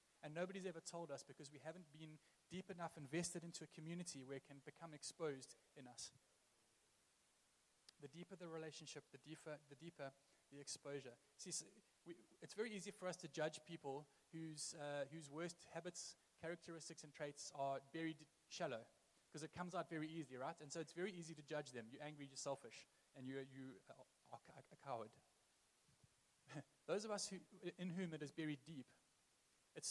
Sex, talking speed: male, 185 wpm